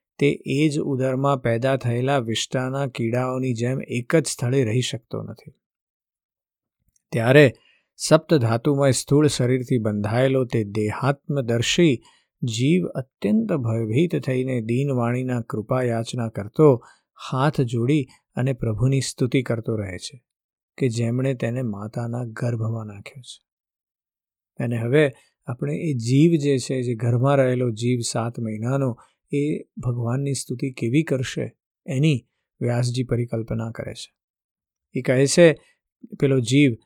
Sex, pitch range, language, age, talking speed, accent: male, 120-140 Hz, Gujarati, 50-69, 50 wpm, native